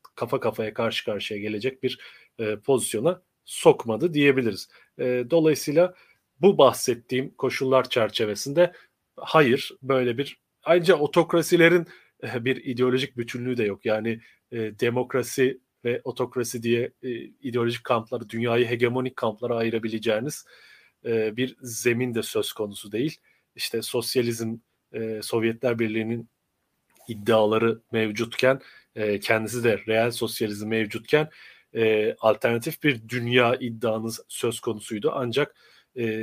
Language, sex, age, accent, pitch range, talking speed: Turkish, male, 40-59, native, 115-130 Hz, 110 wpm